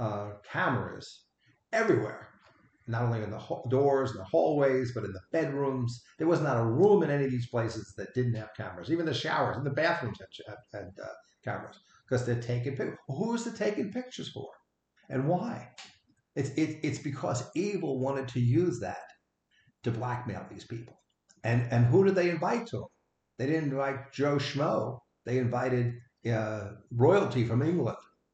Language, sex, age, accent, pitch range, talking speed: English, male, 50-69, American, 110-140 Hz, 175 wpm